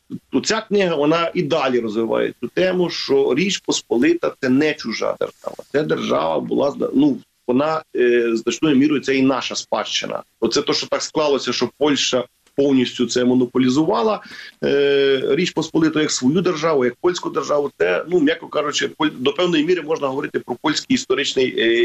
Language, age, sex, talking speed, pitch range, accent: Ukrainian, 40-59, male, 155 wpm, 125-210 Hz, native